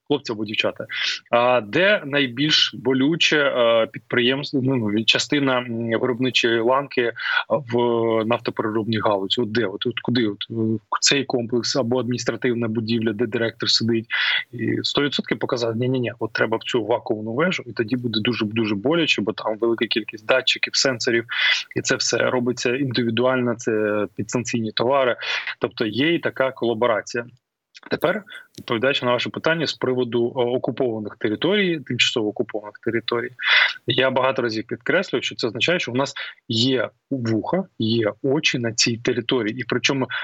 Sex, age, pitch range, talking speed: male, 20-39, 115-130 Hz, 145 wpm